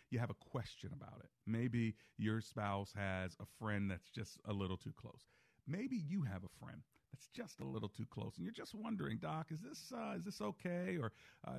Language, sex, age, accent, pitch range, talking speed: English, male, 40-59, American, 100-140 Hz, 215 wpm